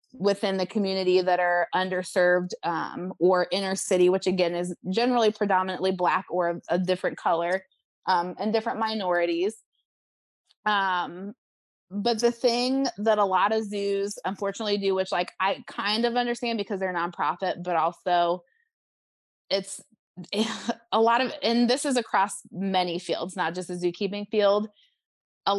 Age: 20-39